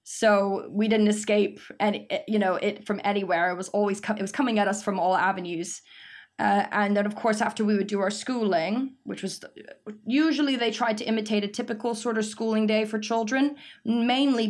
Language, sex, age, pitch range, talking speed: English, female, 20-39, 195-230 Hz, 205 wpm